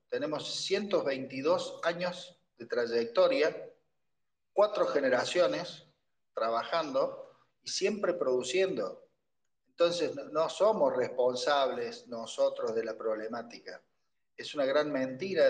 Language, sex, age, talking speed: Spanish, male, 40-59, 90 wpm